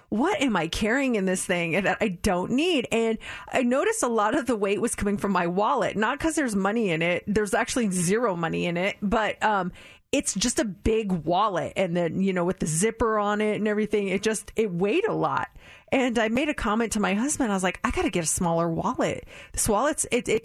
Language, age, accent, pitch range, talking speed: English, 30-49, American, 190-260 Hz, 240 wpm